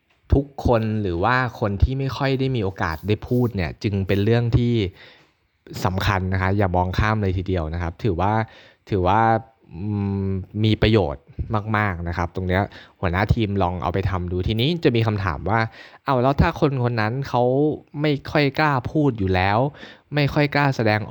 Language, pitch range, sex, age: Thai, 95-120 Hz, male, 20-39